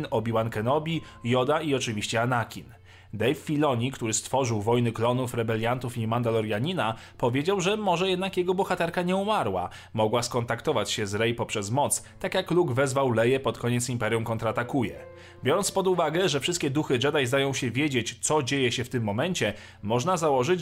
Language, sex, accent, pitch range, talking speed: Polish, male, native, 115-165 Hz, 165 wpm